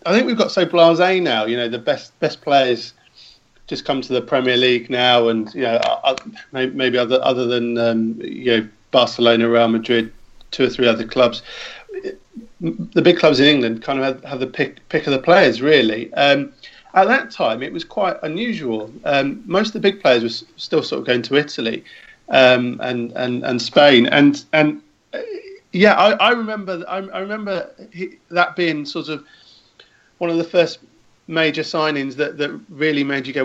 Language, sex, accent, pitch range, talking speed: English, male, British, 125-165 Hz, 195 wpm